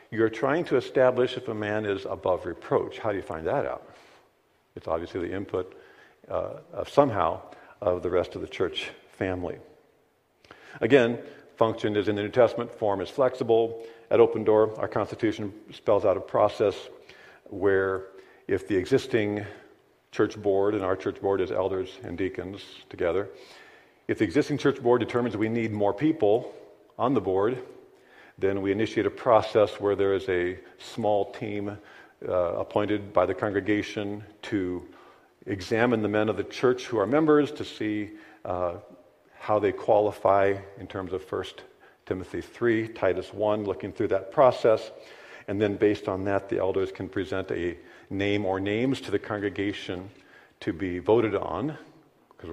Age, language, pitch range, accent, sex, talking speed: 50-69, English, 95-115 Hz, American, male, 160 wpm